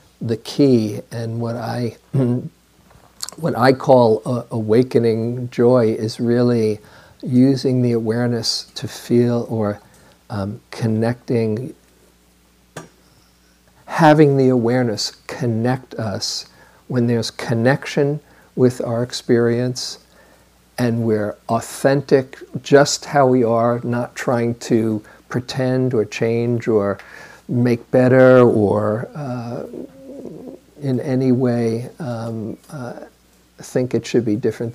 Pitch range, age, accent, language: 110-130 Hz, 50-69, American, English